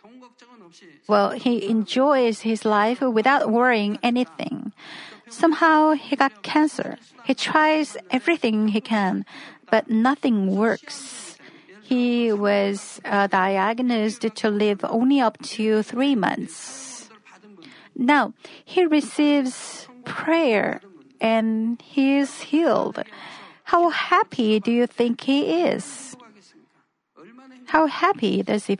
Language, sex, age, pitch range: Korean, female, 40-59, 220-280 Hz